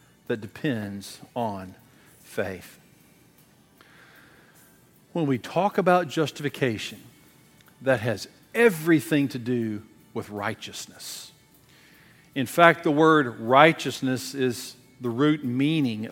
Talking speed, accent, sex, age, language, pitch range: 95 wpm, American, male, 50-69, English, 125-155 Hz